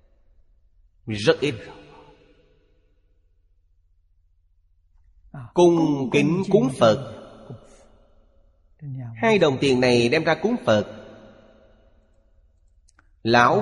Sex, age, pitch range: male, 30-49, 85-130 Hz